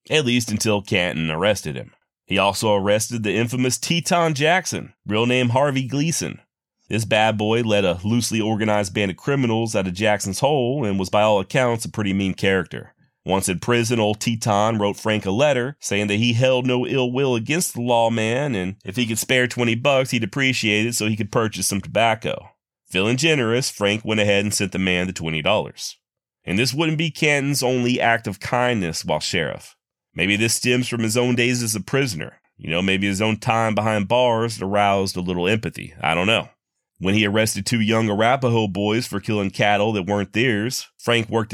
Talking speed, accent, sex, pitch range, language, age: 200 wpm, American, male, 100-125 Hz, English, 30-49